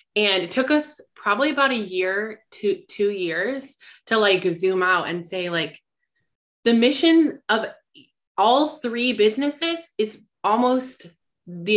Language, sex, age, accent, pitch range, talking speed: English, female, 20-39, American, 175-215 Hz, 140 wpm